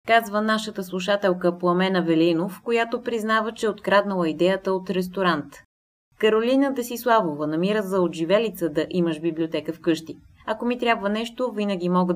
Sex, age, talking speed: female, 20-39, 140 wpm